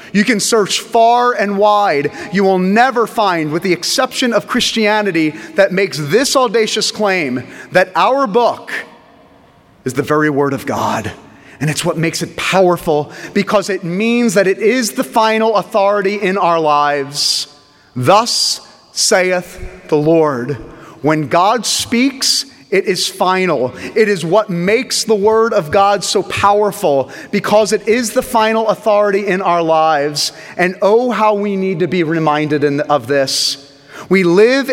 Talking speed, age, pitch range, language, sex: 150 wpm, 30-49, 155-215 Hz, English, male